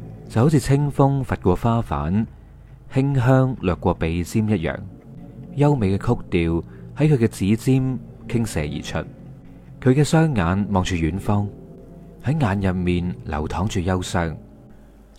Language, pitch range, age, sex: Chinese, 85-130 Hz, 30-49, male